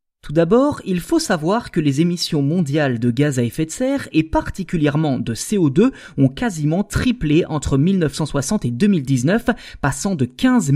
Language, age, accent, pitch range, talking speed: French, 20-39, French, 135-185 Hz, 160 wpm